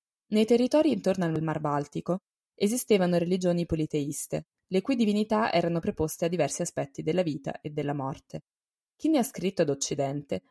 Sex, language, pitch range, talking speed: female, Italian, 150-210 Hz, 160 wpm